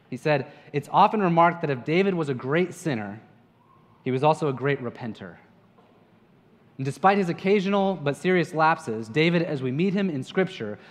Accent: American